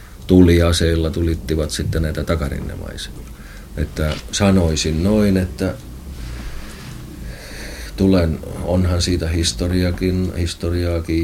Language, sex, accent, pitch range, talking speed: Finnish, male, native, 70-85 Hz, 75 wpm